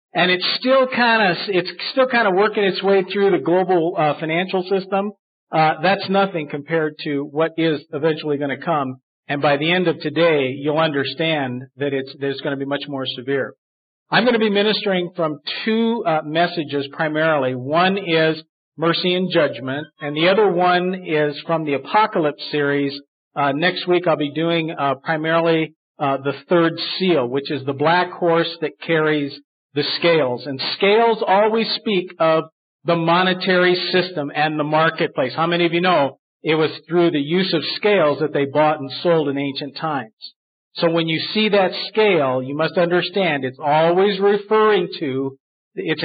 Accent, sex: American, male